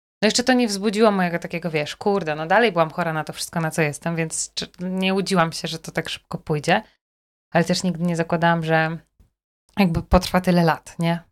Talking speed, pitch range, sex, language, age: 205 wpm, 160-185 Hz, female, Polish, 20-39